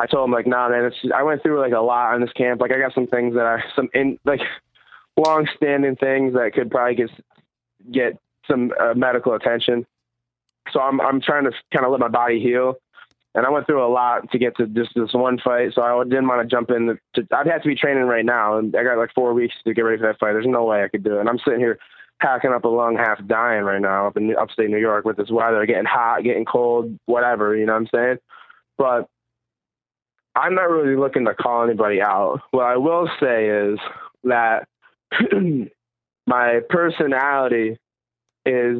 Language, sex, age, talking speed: English, male, 20-39, 220 wpm